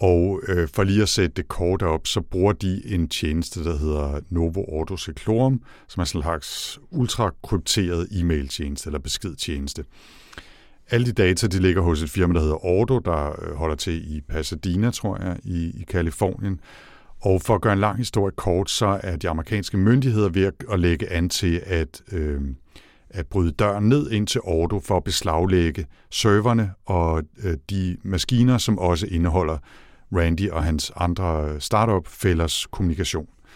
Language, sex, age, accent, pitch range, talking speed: Danish, male, 60-79, native, 80-105 Hz, 165 wpm